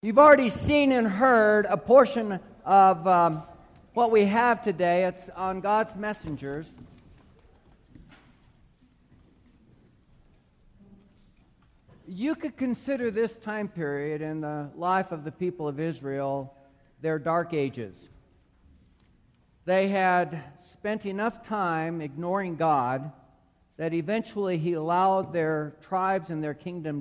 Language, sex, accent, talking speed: English, male, American, 110 wpm